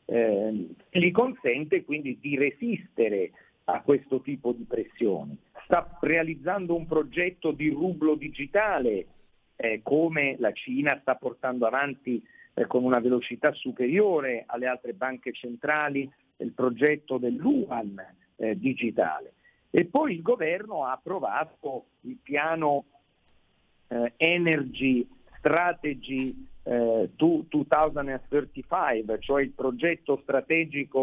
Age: 50-69